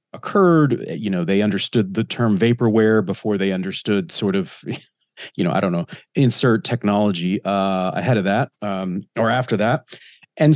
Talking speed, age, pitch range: 165 wpm, 40-59, 110-155 Hz